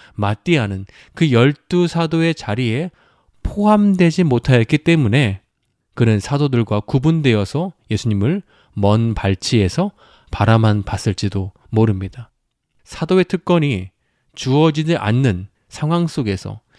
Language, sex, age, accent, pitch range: Korean, male, 20-39, native, 105-145 Hz